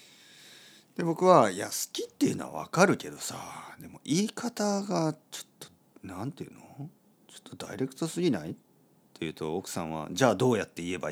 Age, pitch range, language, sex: 40-59, 90-150 Hz, Japanese, male